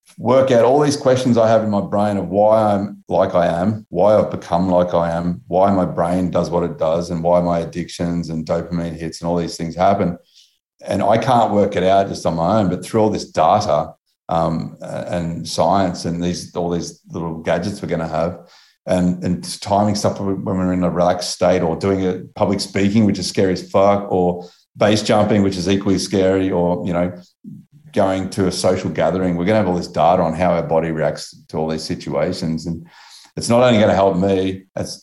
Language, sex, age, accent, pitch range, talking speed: English, male, 30-49, Australian, 85-100 Hz, 220 wpm